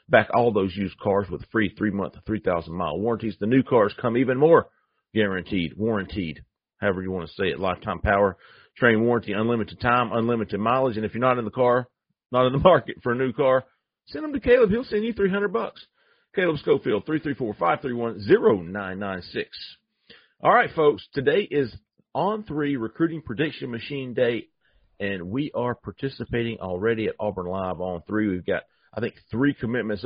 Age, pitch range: 40-59, 100-130 Hz